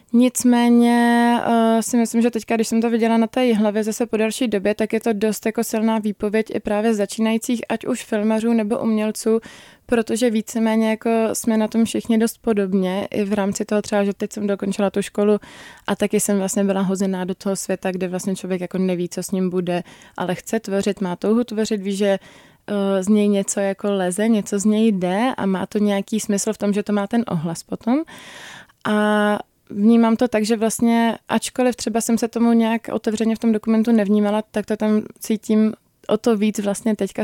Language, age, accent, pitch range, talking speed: Czech, 20-39, native, 205-230 Hz, 200 wpm